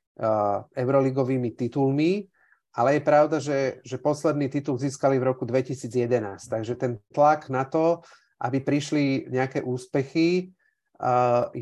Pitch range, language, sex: 125-150 Hz, Slovak, male